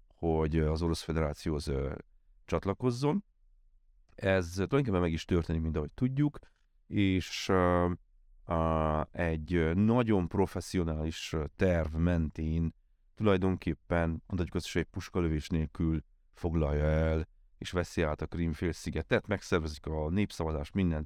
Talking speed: 100 wpm